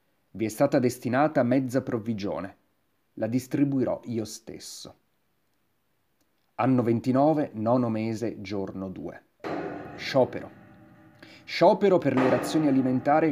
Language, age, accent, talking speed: Italian, 30-49, native, 100 wpm